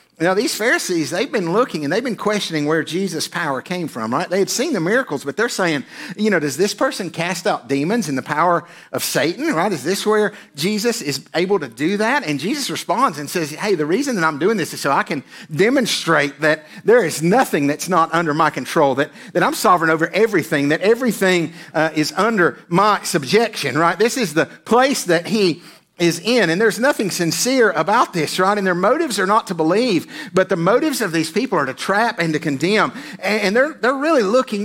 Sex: male